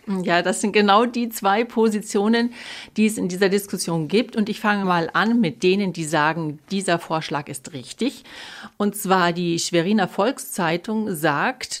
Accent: German